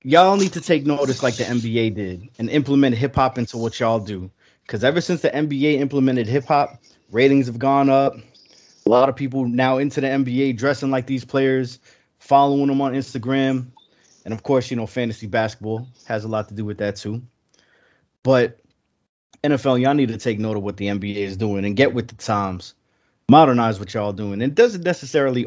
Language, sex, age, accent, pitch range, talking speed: English, male, 30-49, American, 110-135 Hz, 200 wpm